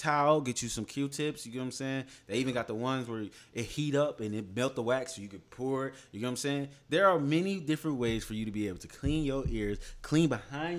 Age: 20-39